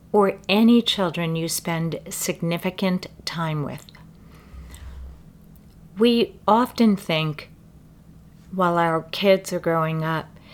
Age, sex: 40-59, female